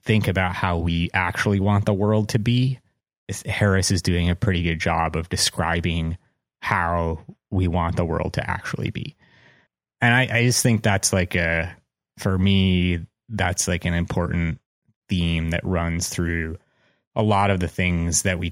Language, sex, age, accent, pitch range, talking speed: English, male, 30-49, American, 85-95 Hz, 170 wpm